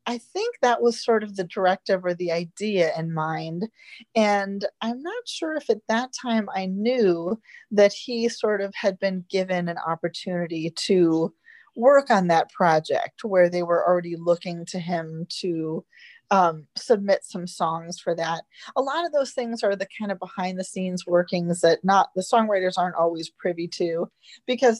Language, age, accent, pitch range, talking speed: English, 30-49, American, 175-235 Hz, 175 wpm